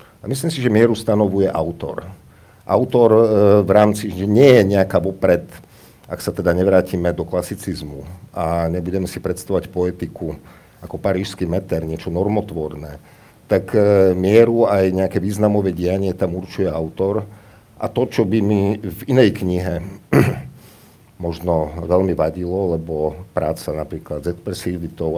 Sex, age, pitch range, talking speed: male, 50-69, 85-105 Hz, 140 wpm